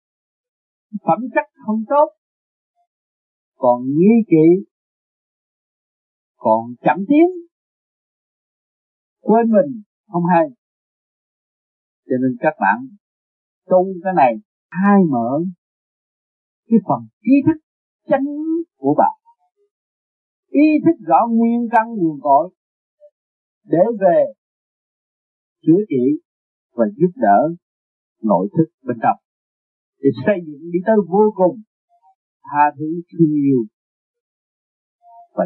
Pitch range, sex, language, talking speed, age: 165-240 Hz, male, Vietnamese, 95 wpm, 50-69